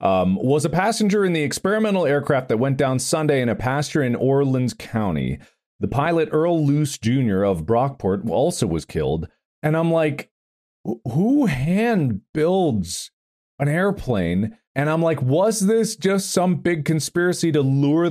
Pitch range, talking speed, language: 115-160 Hz, 150 wpm, English